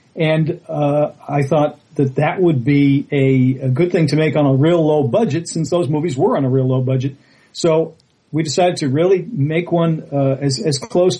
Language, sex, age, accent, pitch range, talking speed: English, male, 40-59, American, 135-160 Hz, 210 wpm